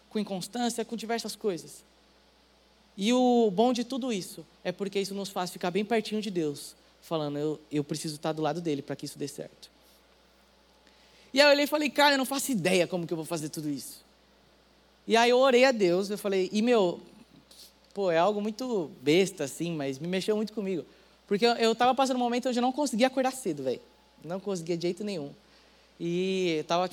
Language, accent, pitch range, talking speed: Portuguese, Brazilian, 165-225 Hz, 205 wpm